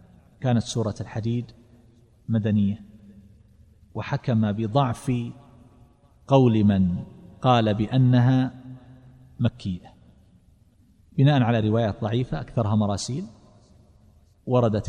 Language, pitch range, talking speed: Arabic, 105-130 Hz, 75 wpm